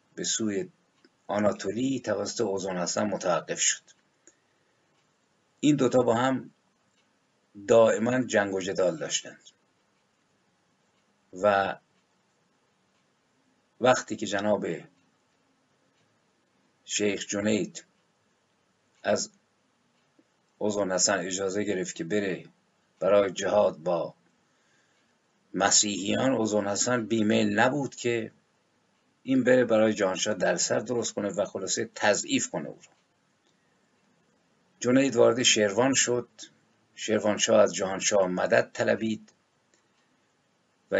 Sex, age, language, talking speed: male, 50-69, Persian, 85 wpm